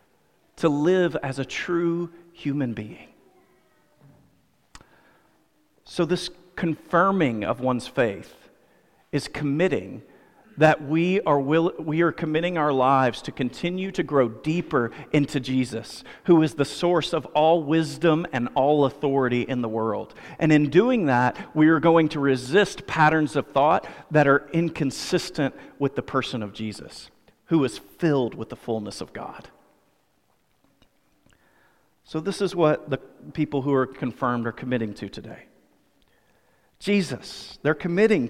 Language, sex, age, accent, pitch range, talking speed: English, male, 40-59, American, 140-195 Hz, 140 wpm